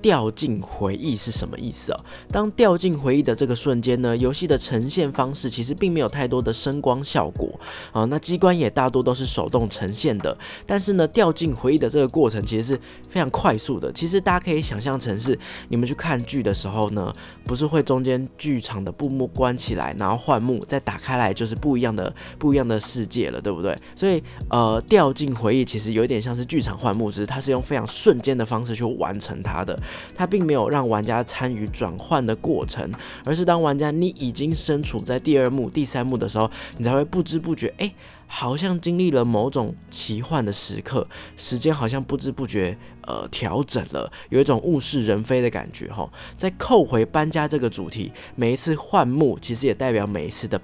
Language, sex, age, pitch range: Chinese, male, 20-39, 110-145 Hz